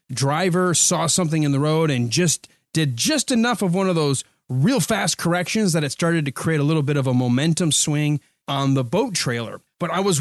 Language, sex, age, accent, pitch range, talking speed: English, male, 30-49, American, 145-195 Hz, 215 wpm